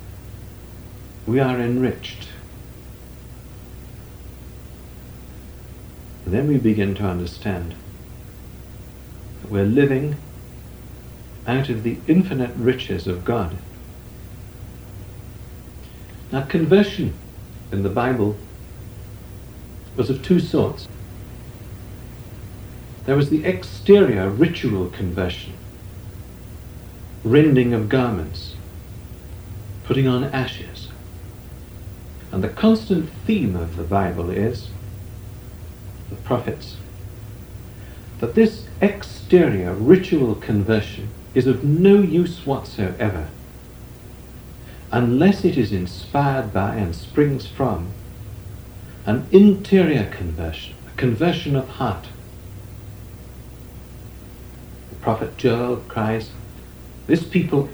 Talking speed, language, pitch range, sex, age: 85 wpm, English, 95-130 Hz, male, 60-79